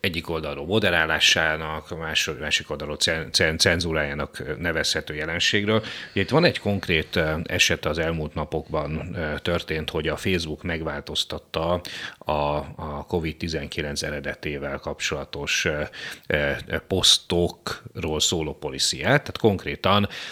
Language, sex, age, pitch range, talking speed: Hungarian, male, 30-49, 75-90 Hz, 100 wpm